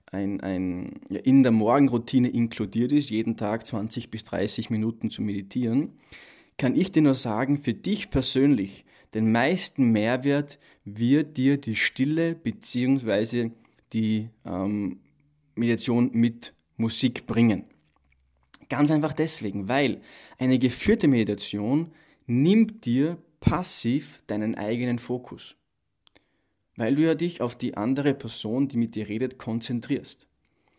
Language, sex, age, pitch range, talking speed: German, male, 20-39, 110-145 Hz, 120 wpm